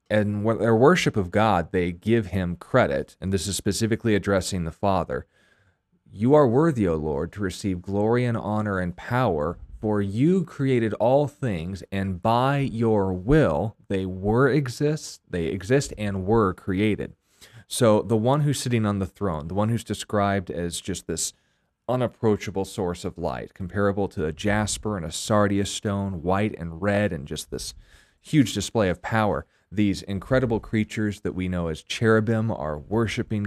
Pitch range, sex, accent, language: 95-110 Hz, male, American, English